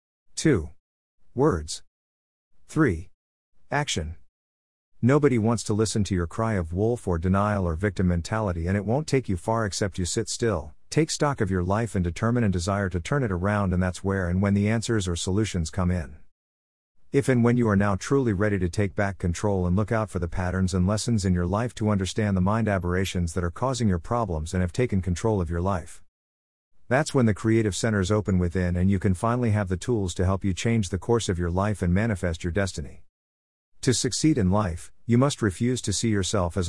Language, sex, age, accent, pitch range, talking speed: English, male, 50-69, American, 90-110 Hz, 215 wpm